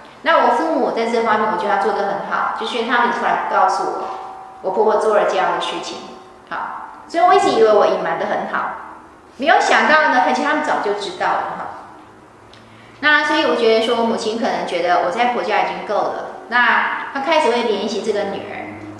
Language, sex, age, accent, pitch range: Chinese, female, 20-39, native, 205-300 Hz